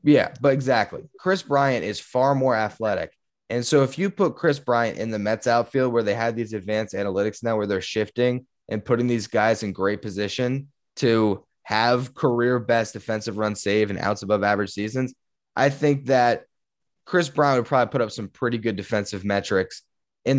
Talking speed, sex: 185 wpm, male